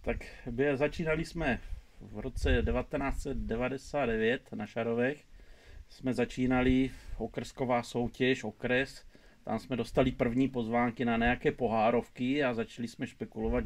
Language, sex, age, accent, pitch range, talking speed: Czech, male, 40-59, native, 115-135 Hz, 110 wpm